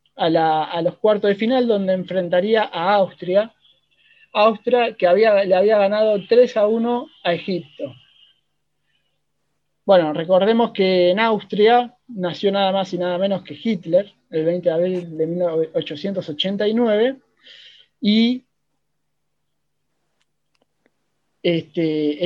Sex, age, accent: male, 30-49, Argentinian